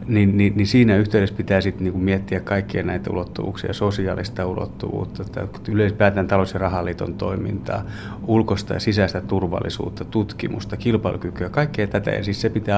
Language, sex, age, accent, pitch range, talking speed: Finnish, male, 30-49, native, 95-115 Hz, 150 wpm